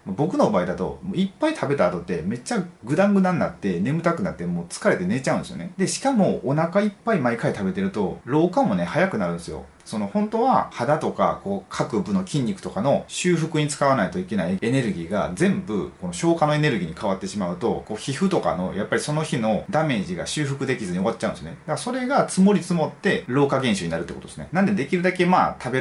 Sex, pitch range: male, 150-200 Hz